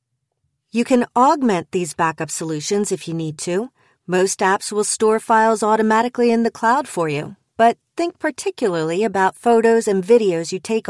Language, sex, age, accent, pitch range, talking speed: English, female, 40-59, American, 170-230 Hz, 165 wpm